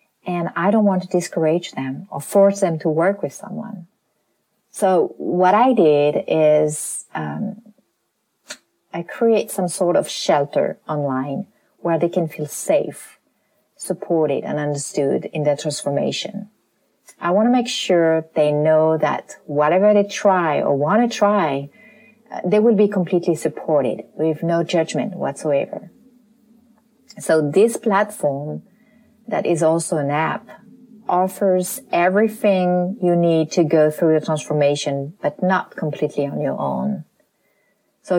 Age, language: 40-59, English